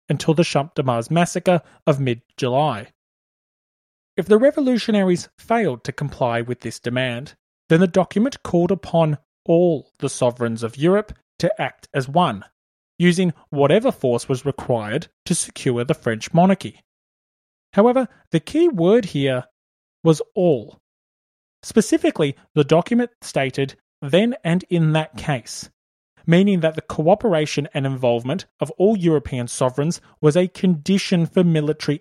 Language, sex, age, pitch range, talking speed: English, male, 30-49, 135-185 Hz, 135 wpm